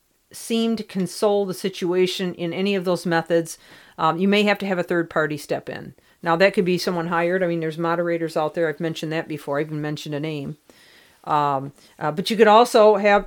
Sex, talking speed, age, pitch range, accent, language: female, 220 wpm, 50-69, 165-200 Hz, American, English